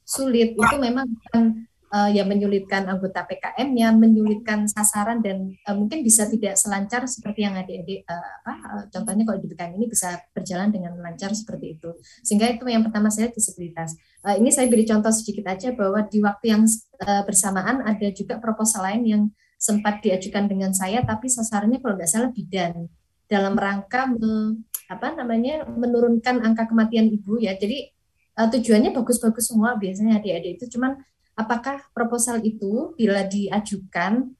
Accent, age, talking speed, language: native, 20-39, 160 wpm, Indonesian